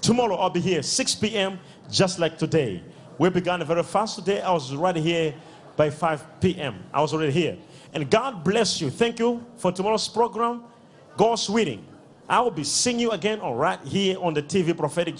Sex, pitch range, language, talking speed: male, 150-200 Hz, English, 190 wpm